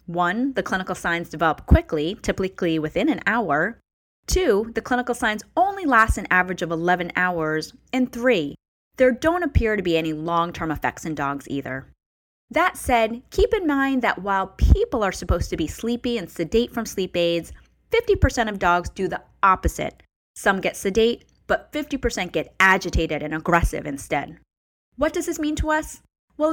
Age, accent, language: 10-29, American, English